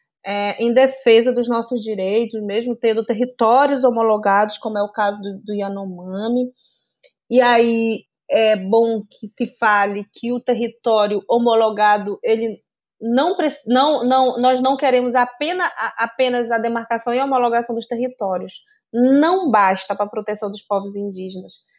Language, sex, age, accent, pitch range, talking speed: Portuguese, female, 20-39, Brazilian, 215-265 Hz, 145 wpm